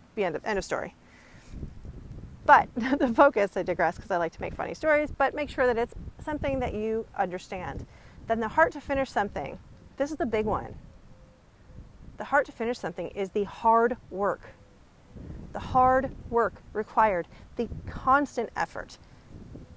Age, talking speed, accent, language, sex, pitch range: 40-59, 160 wpm, American, English, female, 185-240 Hz